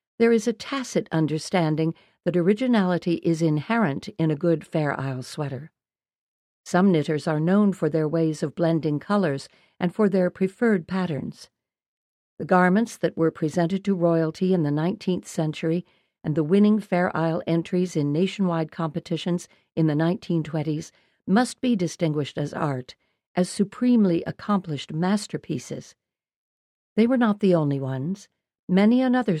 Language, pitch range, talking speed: English, 160-195 Hz, 145 wpm